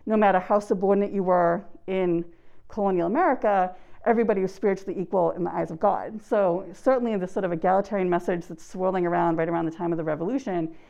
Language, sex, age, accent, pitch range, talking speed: English, female, 40-59, American, 175-210 Hz, 195 wpm